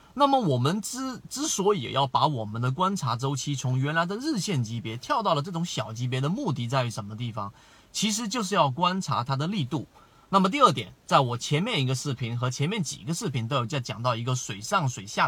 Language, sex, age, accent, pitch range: Chinese, male, 30-49, native, 130-175 Hz